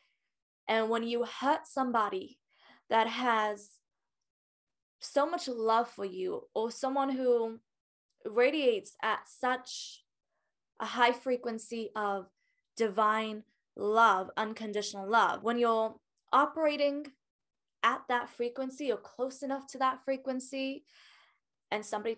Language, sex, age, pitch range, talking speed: English, female, 10-29, 205-260 Hz, 110 wpm